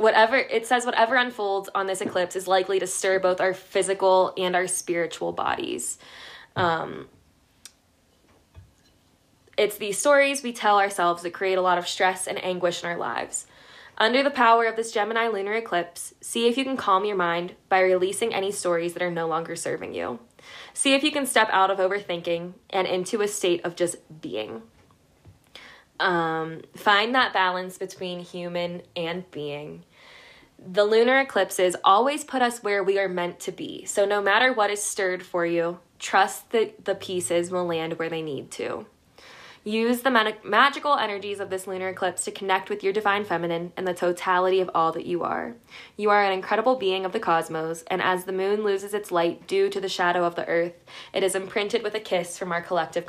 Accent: American